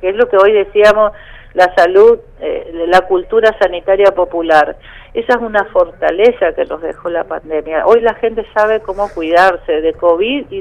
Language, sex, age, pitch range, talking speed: Spanish, female, 50-69, 180-220 Hz, 180 wpm